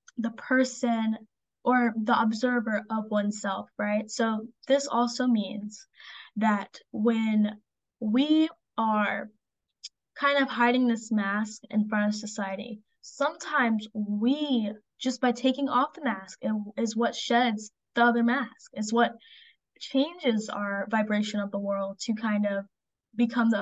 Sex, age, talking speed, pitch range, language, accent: female, 10-29, 135 wpm, 210-245 Hz, English, American